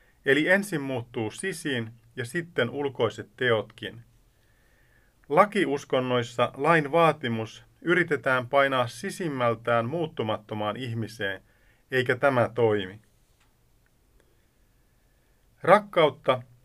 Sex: male